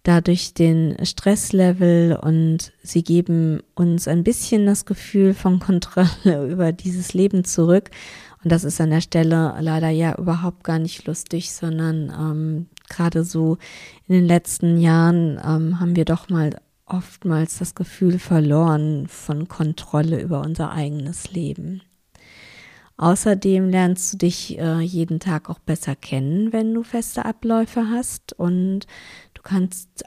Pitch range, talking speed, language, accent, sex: 160-185 Hz, 140 wpm, German, German, female